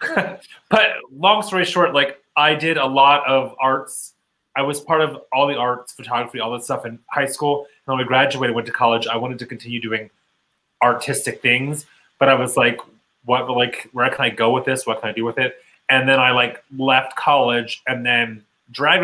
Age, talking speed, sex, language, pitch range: 30-49, 210 wpm, male, English, 125-155 Hz